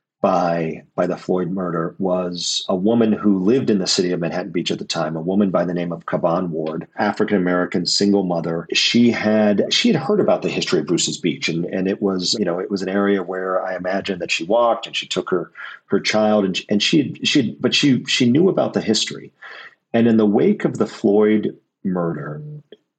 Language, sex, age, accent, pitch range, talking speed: English, male, 40-59, American, 90-105 Hz, 220 wpm